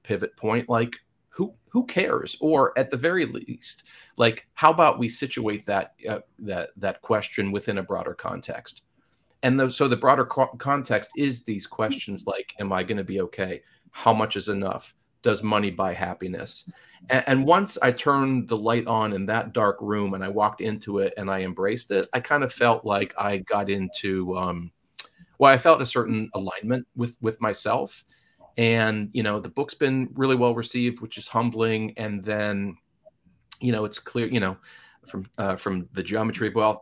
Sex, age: male, 40-59